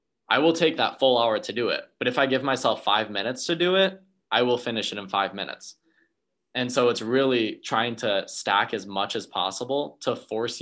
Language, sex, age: English, male, 20-39